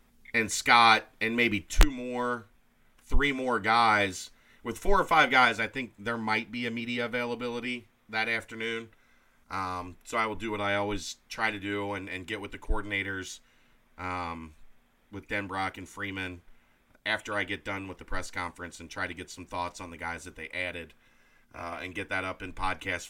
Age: 30-49